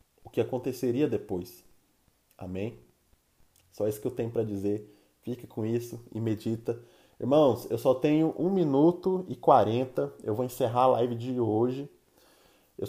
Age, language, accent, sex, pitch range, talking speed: 20-39, Portuguese, Brazilian, male, 110-135 Hz, 155 wpm